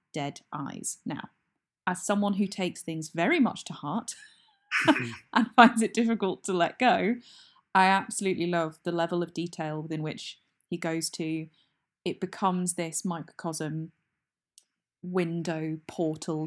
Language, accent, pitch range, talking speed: English, British, 160-190 Hz, 135 wpm